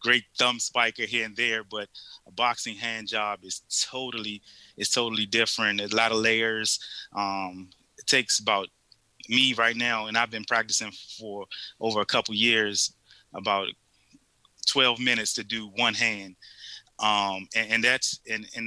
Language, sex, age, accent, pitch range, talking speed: English, male, 20-39, American, 100-115 Hz, 160 wpm